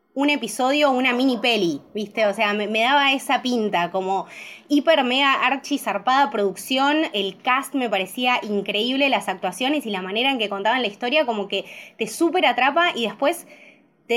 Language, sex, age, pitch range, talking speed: Spanish, female, 20-39, 190-255 Hz, 180 wpm